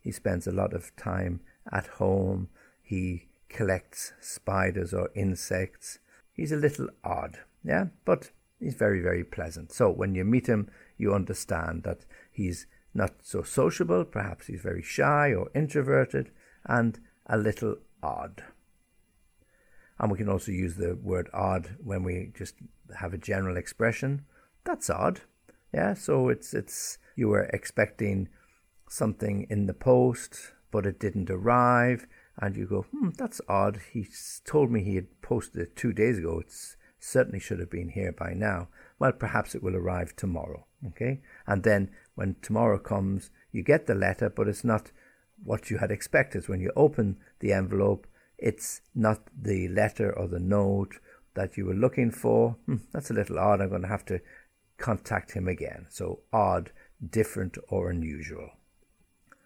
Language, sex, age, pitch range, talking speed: English, male, 50-69, 90-110 Hz, 160 wpm